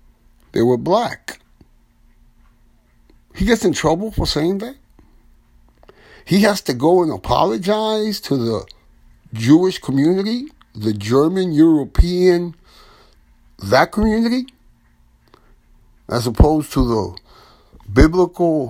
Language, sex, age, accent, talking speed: English, male, 60-79, American, 95 wpm